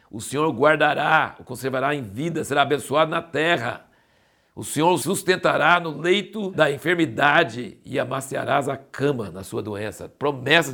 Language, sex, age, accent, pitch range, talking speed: Portuguese, male, 60-79, Brazilian, 125-170 Hz, 155 wpm